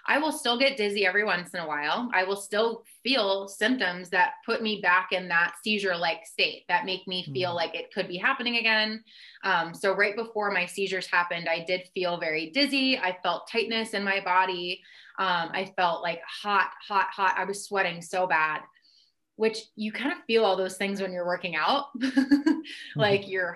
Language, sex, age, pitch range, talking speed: English, female, 20-39, 180-225 Hz, 195 wpm